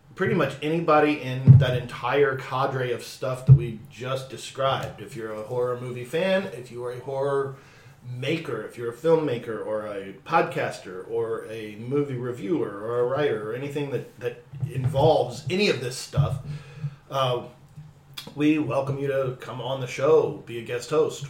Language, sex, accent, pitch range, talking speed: English, male, American, 120-145 Hz, 170 wpm